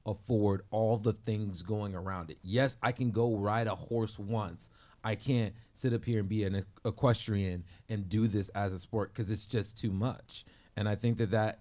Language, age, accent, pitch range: English, 30-49, American, 95-110 Hz